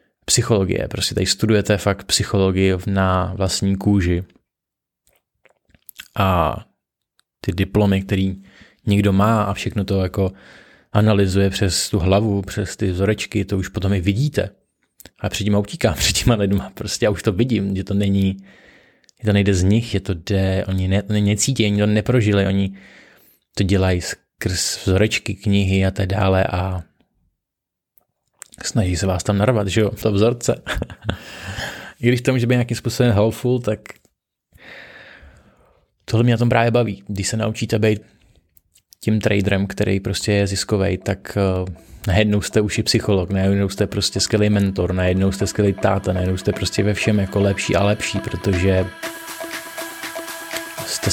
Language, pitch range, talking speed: Czech, 95-110 Hz, 155 wpm